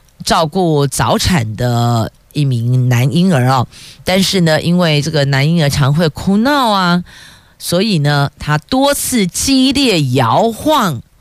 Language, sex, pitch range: Chinese, female, 135-200 Hz